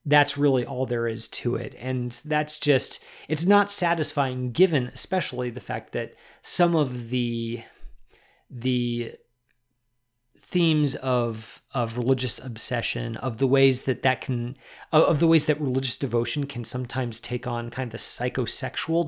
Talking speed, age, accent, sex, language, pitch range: 150 wpm, 30-49, American, male, English, 120-145 Hz